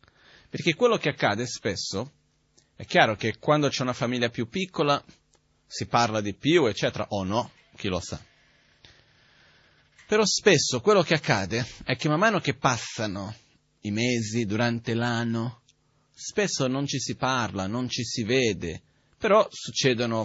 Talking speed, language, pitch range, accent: 150 wpm, Italian, 105-140 Hz, native